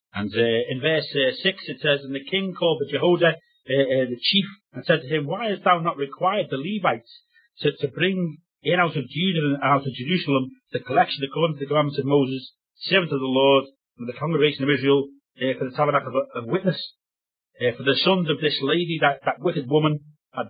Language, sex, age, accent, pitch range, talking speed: English, male, 40-59, British, 135-175 Hz, 230 wpm